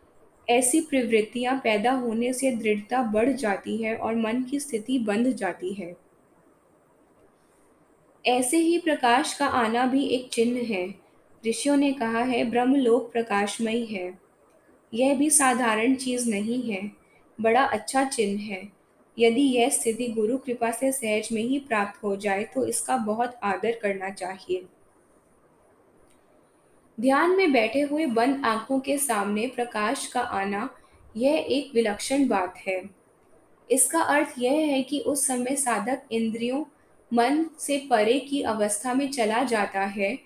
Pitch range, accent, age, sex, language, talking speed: 220-265 Hz, native, 10-29, female, Hindi, 115 wpm